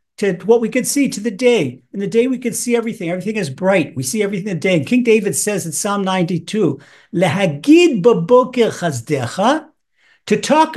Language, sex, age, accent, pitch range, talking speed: English, male, 50-69, American, 170-235 Hz, 185 wpm